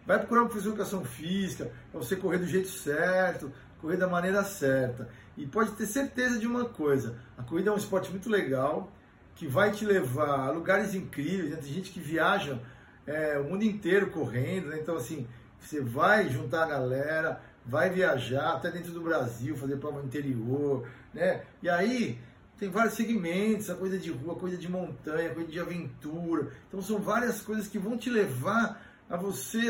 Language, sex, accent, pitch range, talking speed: Portuguese, male, Brazilian, 155-210 Hz, 175 wpm